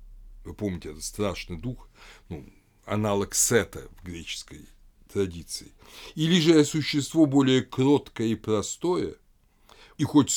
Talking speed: 115 wpm